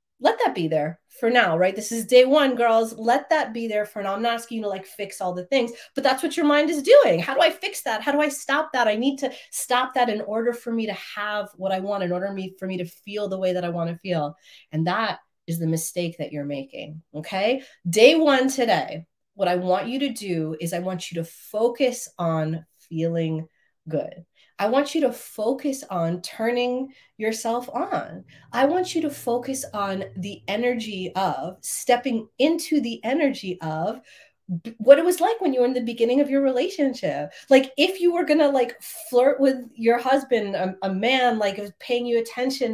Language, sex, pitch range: English, female, 190-265 Hz